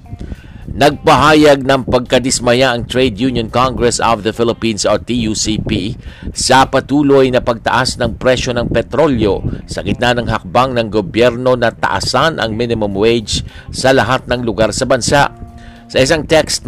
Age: 50-69